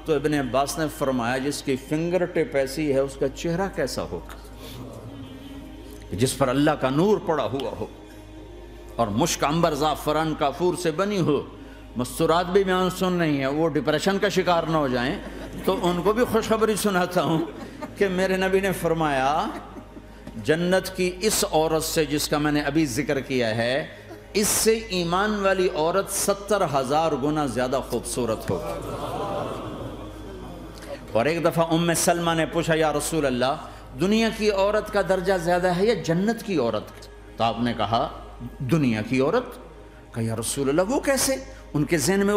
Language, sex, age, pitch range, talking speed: Urdu, male, 50-69, 135-190 Hz, 150 wpm